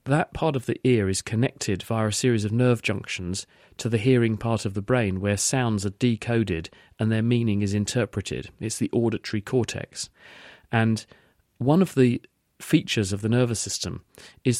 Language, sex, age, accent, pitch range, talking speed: English, male, 40-59, British, 105-125 Hz, 175 wpm